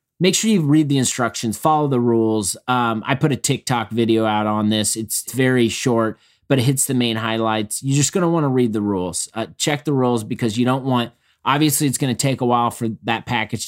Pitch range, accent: 105-130 Hz, American